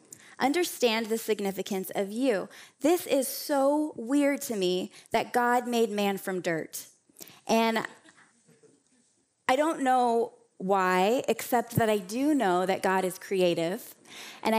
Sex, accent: female, American